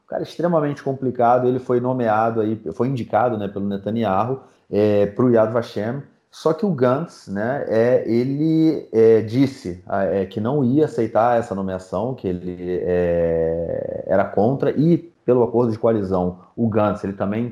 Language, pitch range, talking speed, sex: Portuguese, 95-120 Hz, 140 wpm, male